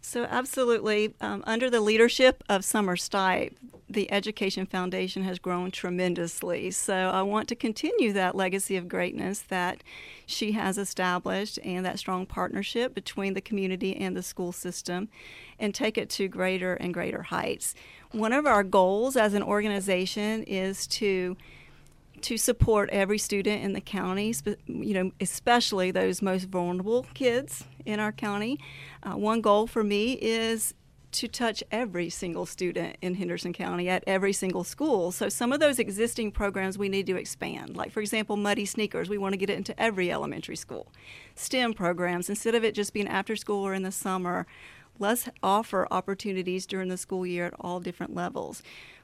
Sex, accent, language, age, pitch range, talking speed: female, American, English, 40-59, 185-220 Hz, 170 wpm